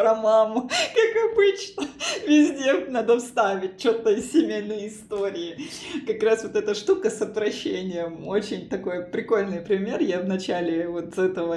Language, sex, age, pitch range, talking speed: Russian, female, 20-39, 185-230 Hz, 140 wpm